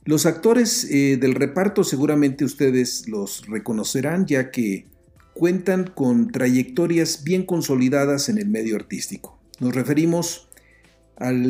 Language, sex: Spanish, male